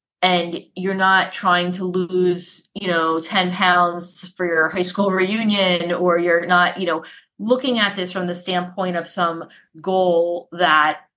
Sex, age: female, 30-49